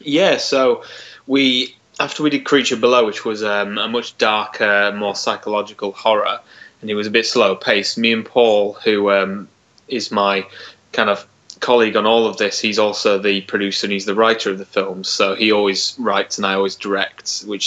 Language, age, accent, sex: English, 20-39, British, male